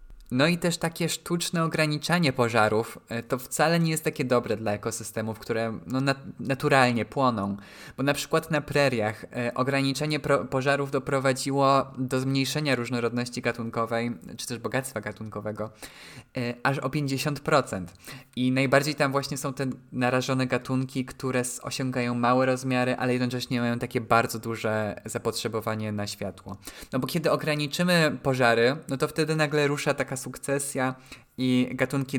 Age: 20-39